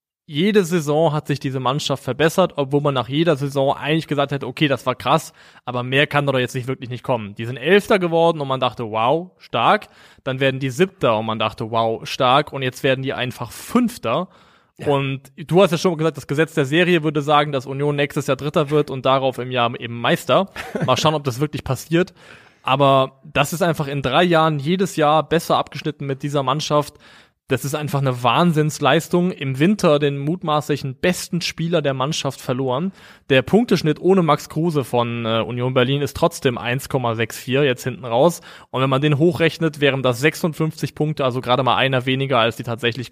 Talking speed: 195 wpm